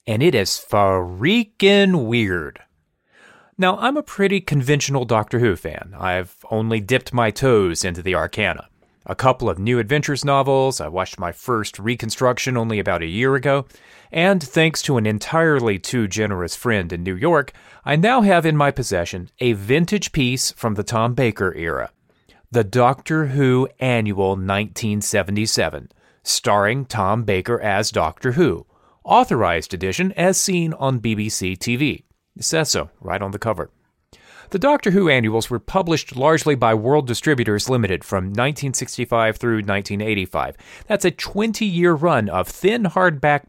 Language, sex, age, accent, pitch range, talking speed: English, male, 30-49, American, 105-160 Hz, 150 wpm